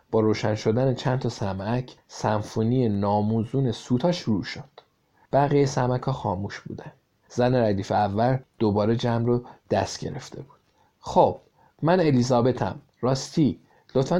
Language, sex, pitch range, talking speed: Persian, male, 110-140 Hz, 125 wpm